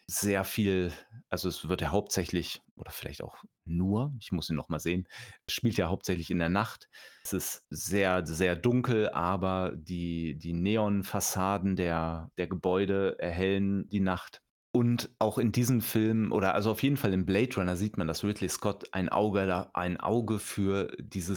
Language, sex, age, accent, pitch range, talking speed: German, male, 30-49, German, 90-105 Hz, 170 wpm